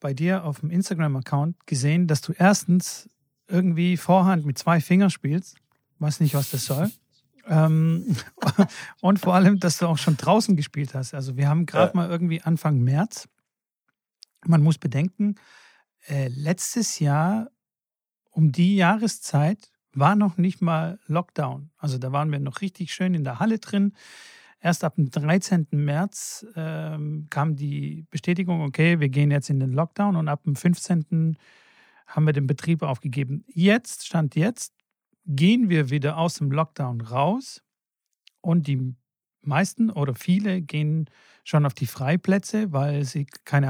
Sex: male